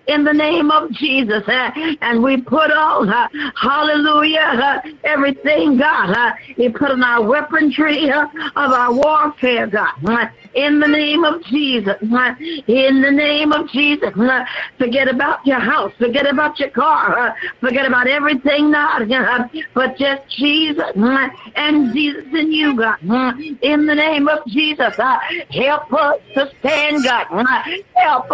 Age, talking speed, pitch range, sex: 60-79, 140 wpm, 270-310 Hz, female